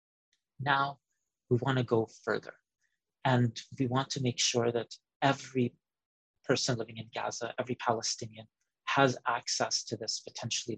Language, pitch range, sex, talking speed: English, 110-130 Hz, male, 140 wpm